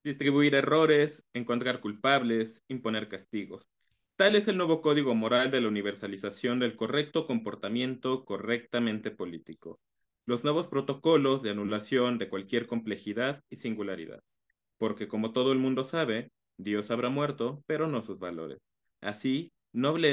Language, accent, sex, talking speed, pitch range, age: Spanish, Mexican, male, 135 wpm, 110-145 Hz, 20-39